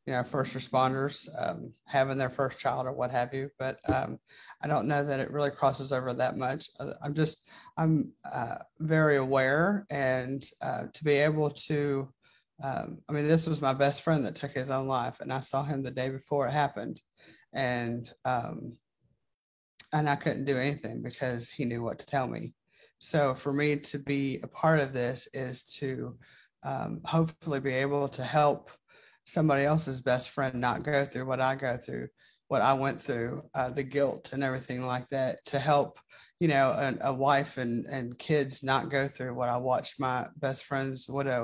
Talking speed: 190 wpm